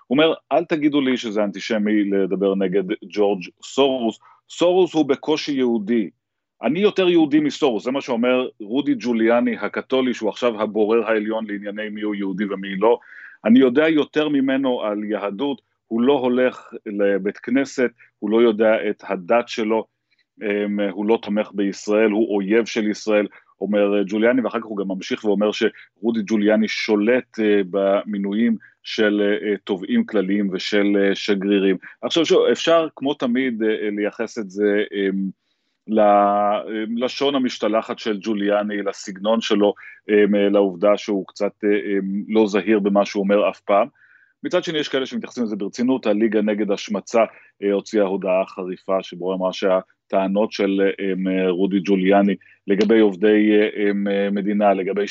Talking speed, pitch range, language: 135 wpm, 100-115 Hz, Hebrew